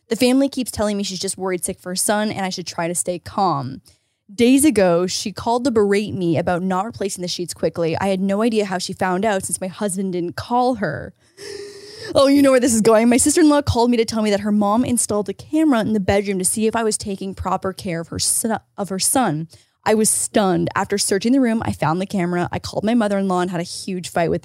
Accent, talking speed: American, 250 wpm